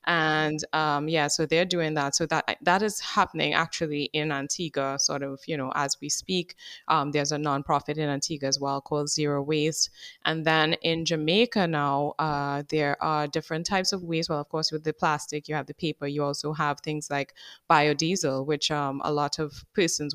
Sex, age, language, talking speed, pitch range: female, 20-39, English, 200 wpm, 145-165 Hz